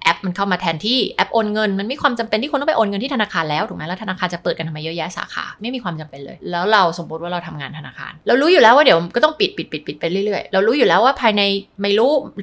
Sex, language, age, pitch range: female, Thai, 20-39, 180-225 Hz